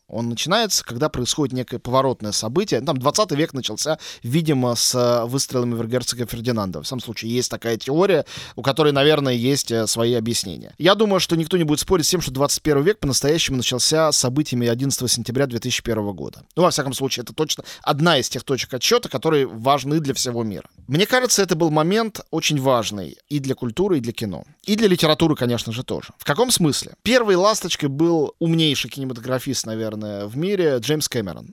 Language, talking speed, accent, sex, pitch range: Russian, 185 wpm, native, male, 125-175 Hz